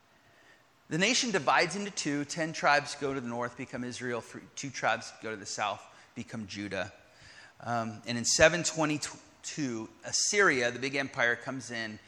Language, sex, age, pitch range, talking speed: English, male, 30-49, 110-150 Hz, 155 wpm